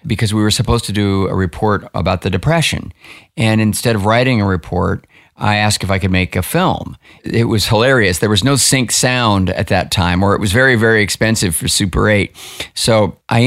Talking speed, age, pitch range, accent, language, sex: 210 wpm, 50-69, 100-120 Hz, American, English, male